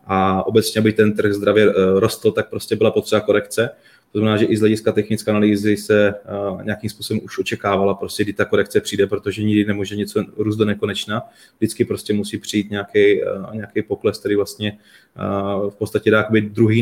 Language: Czech